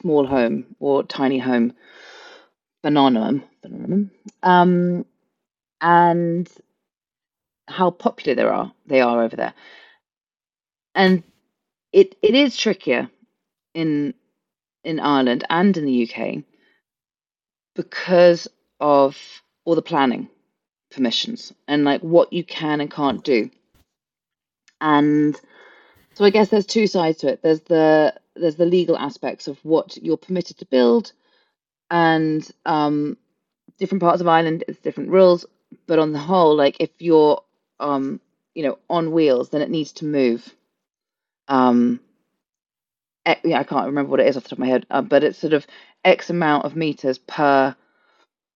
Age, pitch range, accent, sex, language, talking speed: 30-49, 140-180 Hz, British, female, English, 140 wpm